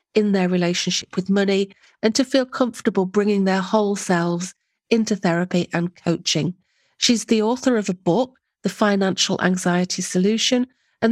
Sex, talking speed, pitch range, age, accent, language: female, 150 wpm, 180-225 Hz, 40-59, British, English